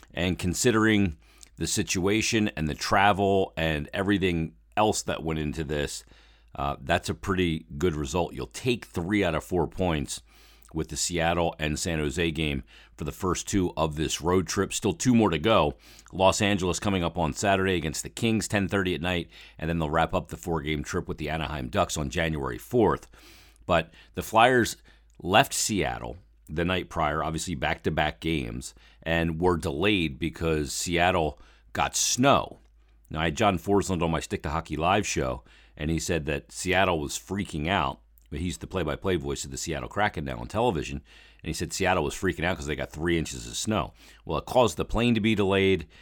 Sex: male